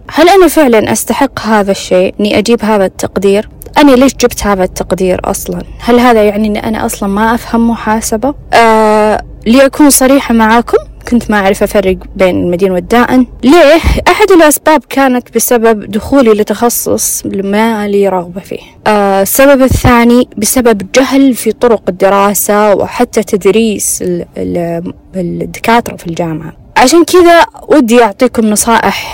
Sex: female